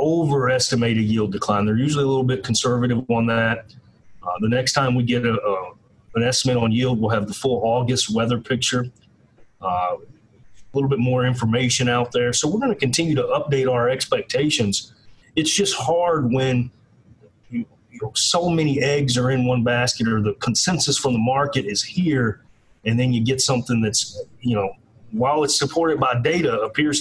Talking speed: 175 wpm